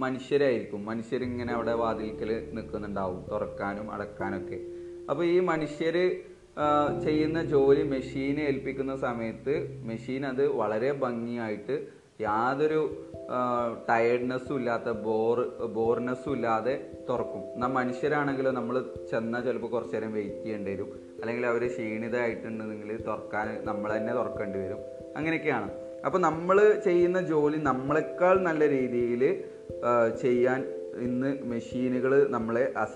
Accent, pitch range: native, 115-160 Hz